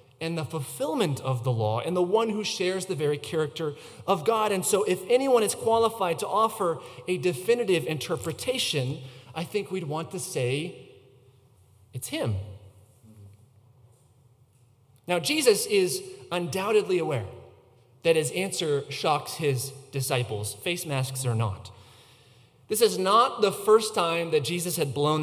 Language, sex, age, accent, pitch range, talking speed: English, male, 30-49, American, 125-180 Hz, 145 wpm